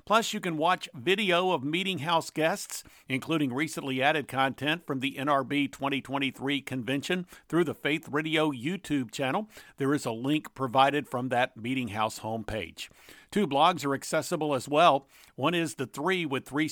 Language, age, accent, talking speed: English, 50-69, American, 165 wpm